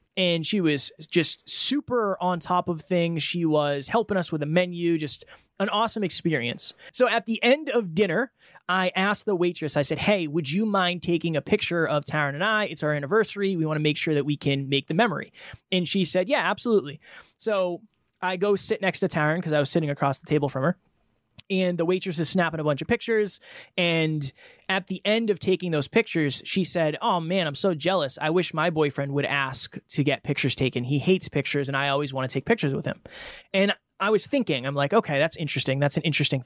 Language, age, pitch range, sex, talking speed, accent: English, 20-39, 150-195 Hz, male, 225 wpm, American